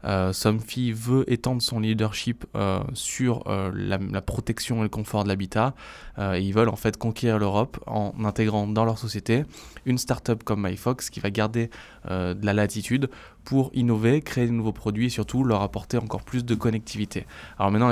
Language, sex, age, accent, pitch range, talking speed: French, male, 20-39, French, 105-125 Hz, 185 wpm